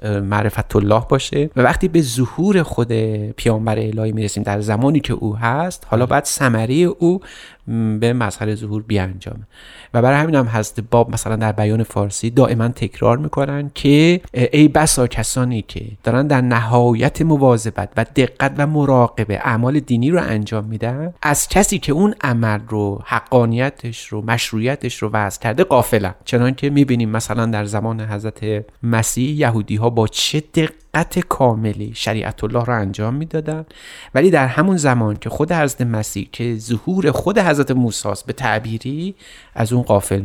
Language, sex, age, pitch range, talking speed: Persian, male, 30-49, 110-140 Hz, 160 wpm